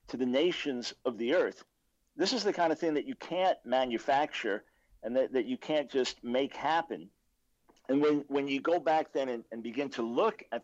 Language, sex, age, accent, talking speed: English, male, 50-69, American, 210 wpm